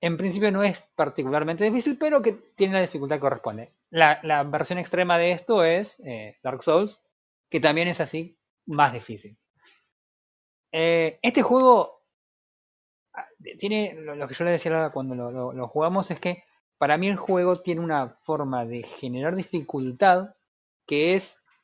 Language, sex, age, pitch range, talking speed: Spanish, male, 20-39, 140-185 Hz, 160 wpm